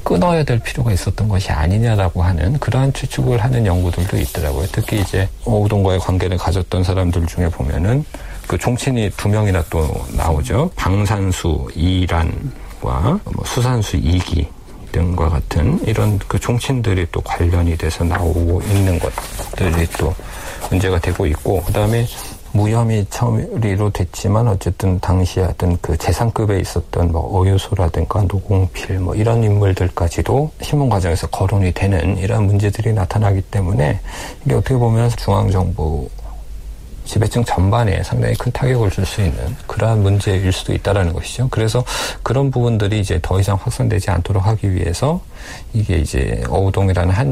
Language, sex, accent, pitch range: Korean, male, native, 90-110 Hz